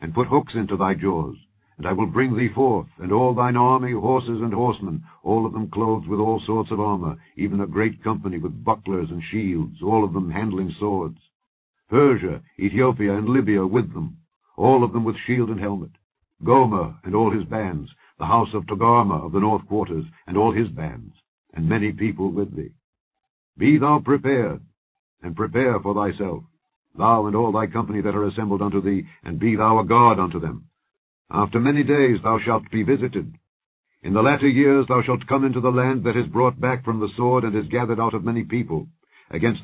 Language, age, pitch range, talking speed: English, 60-79, 100-125 Hz, 200 wpm